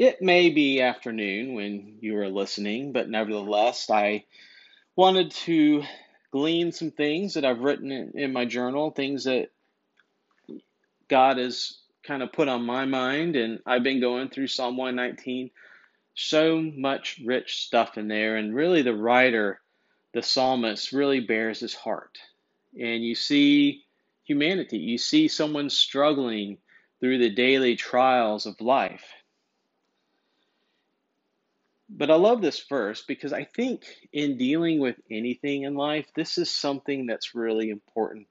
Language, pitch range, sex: English, 115-160 Hz, male